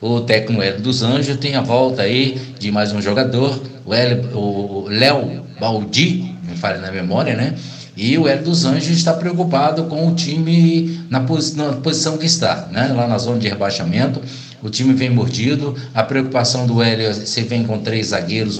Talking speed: 175 wpm